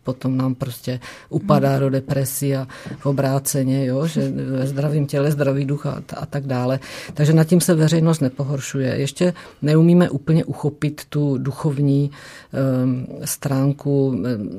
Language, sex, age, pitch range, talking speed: Czech, female, 50-69, 135-145 Hz, 140 wpm